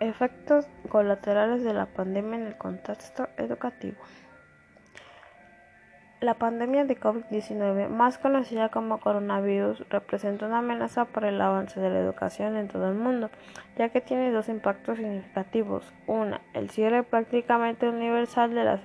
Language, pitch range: Spanish, 200-235 Hz